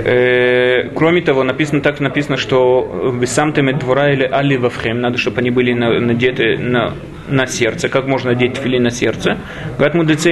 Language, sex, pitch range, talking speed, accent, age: Russian, male, 125-150 Hz, 145 wpm, native, 30-49